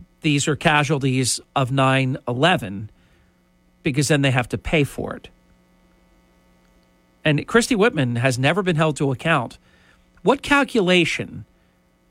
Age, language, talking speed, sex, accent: 50-69, English, 120 wpm, male, American